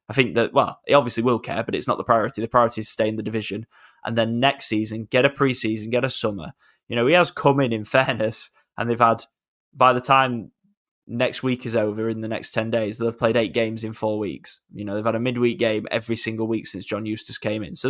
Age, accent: 10-29, British